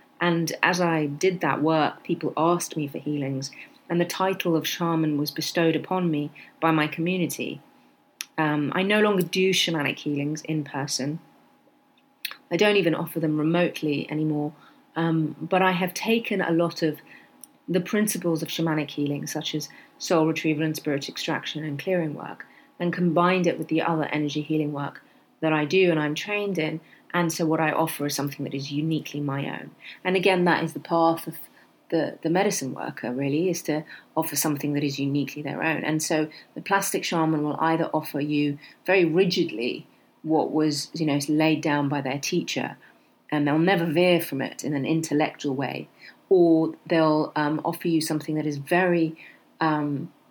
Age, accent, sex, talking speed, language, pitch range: 30-49, British, female, 180 wpm, English, 150-175 Hz